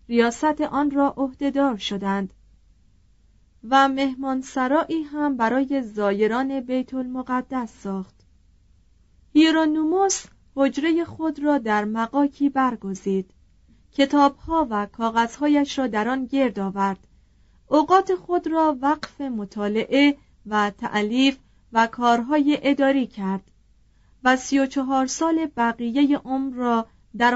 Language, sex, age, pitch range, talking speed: Persian, female, 30-49, 215-285 Hz, 105 wpm